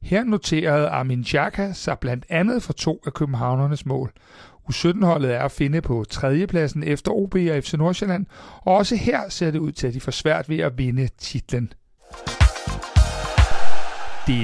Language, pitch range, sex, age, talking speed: Danish, 130-185 Hz, male, 60-79, 160 wpm